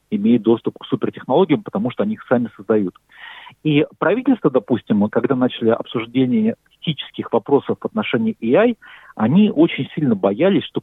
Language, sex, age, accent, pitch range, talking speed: Russian, male, 40-59, native, 120-185 Hz, 145 wpm